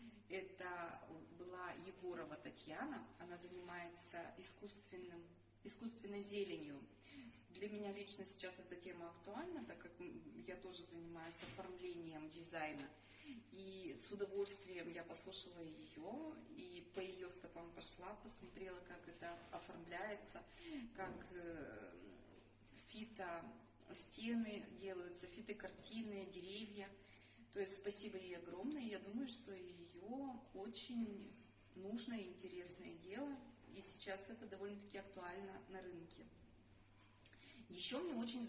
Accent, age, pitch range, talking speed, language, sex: native, 30-49, 175-205 Hz, 105 wpm, Russian, female